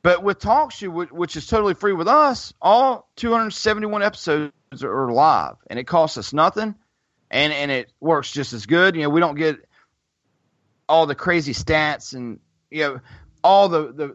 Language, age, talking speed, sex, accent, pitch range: English, 30-49, 175 wpm, male, American, 135-180 Hz